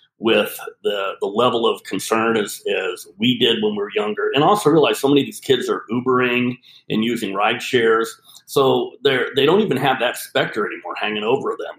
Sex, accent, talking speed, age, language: male, American, 205 wpm, 40-59, English